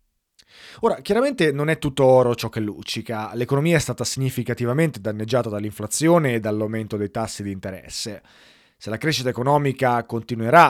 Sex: male